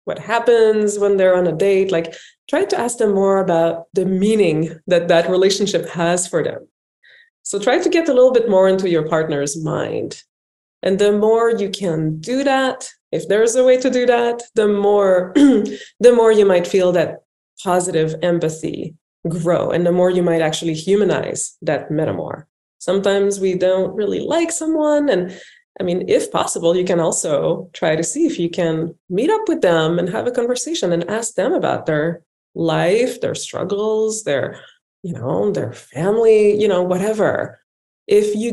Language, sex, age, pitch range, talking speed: English, female, 20-39, 180-245 Hz, 180 wpm